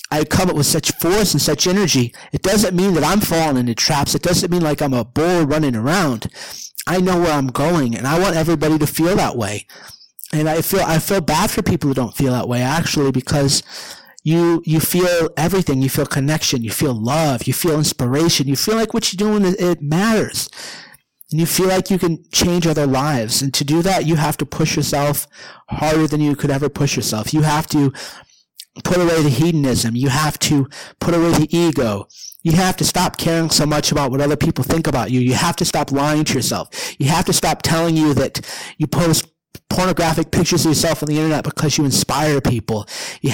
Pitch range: 145-170 Hz